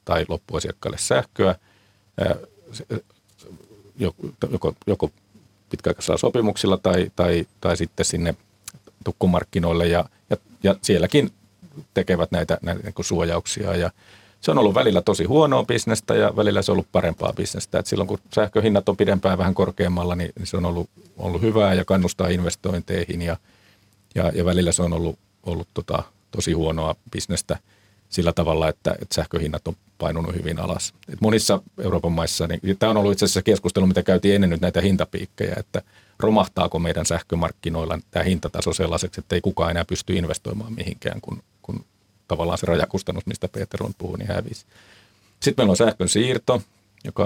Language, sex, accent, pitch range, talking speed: Finnish, male, native, 85-100 Hz, 150 wpm